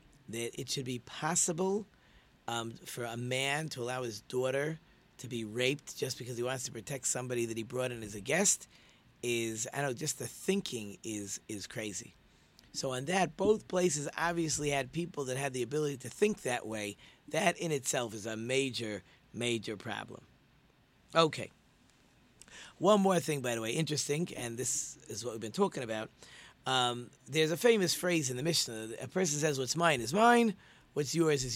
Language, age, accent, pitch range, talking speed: English, 40-59, American, 120-160 Hz, 185 wpm